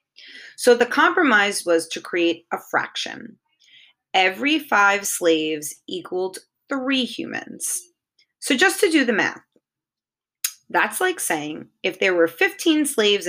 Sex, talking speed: female, 125 wpm